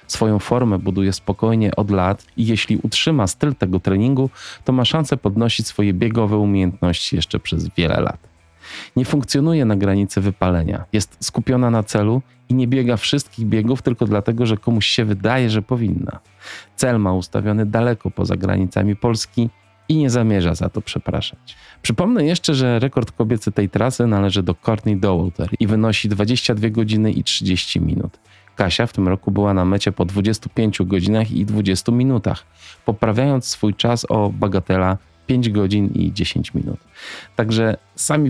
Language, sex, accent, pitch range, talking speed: Polish, male, native, 95-120 Hz, 160 wpm